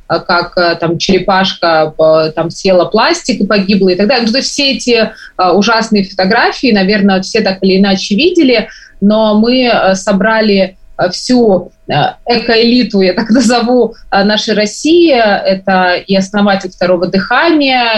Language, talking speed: Russian, 120 wpm